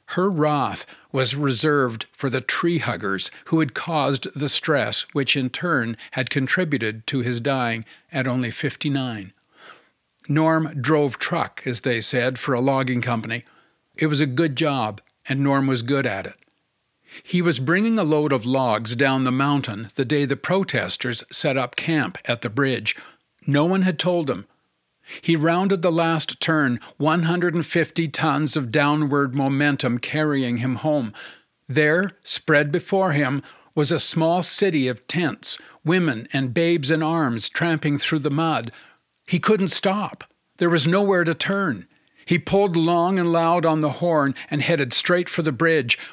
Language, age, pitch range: English, 50-69, 130-170 Hz